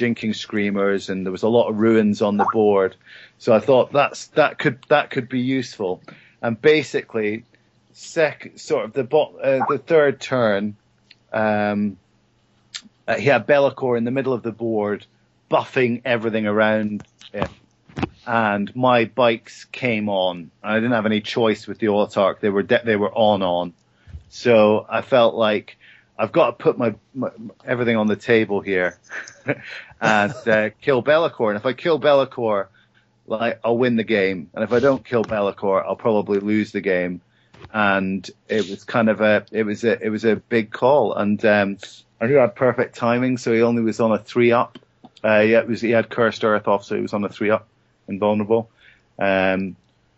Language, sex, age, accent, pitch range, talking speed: English, male, 40-59, British, 105-120 Hz, 185 wpm